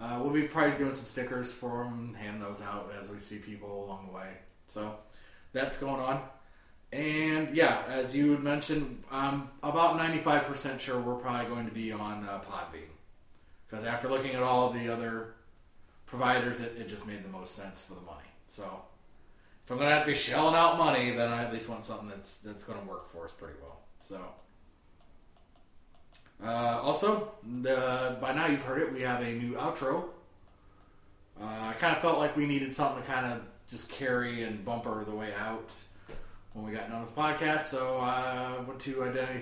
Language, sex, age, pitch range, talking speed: English, male, 30-49, 100-140 Hz, 200 wpm